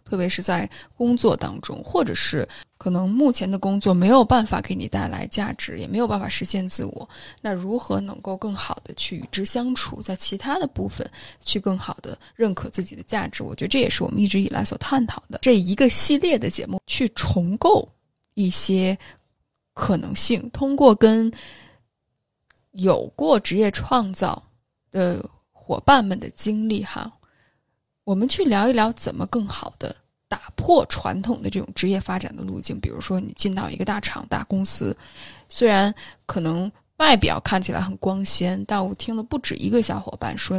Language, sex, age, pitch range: Chinese, female, 10-29, 190-245 Hz